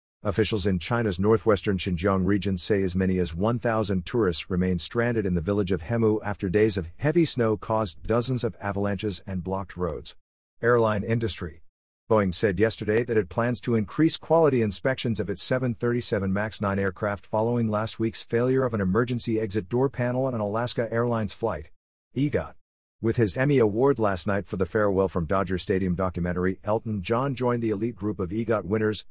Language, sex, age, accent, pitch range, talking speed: English, male, 50-69, American, 95-120 Hz, 180 wpm